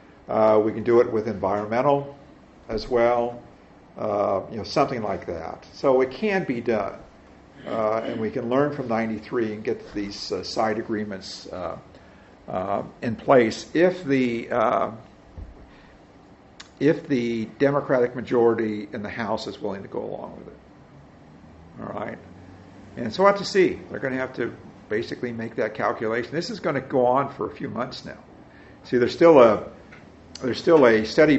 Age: 50-69